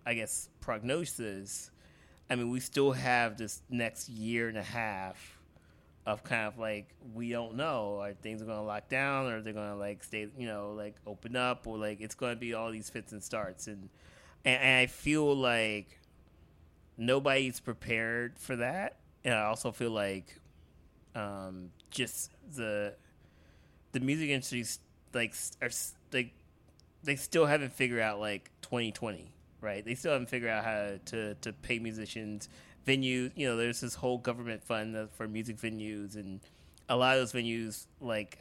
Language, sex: English, male